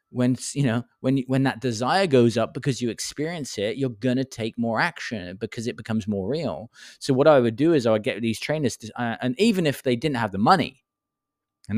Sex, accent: male, British